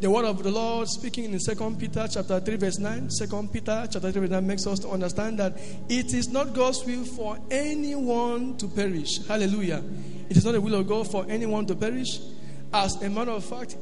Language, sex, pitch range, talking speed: English, male, 185-230 Hz, 215 wpm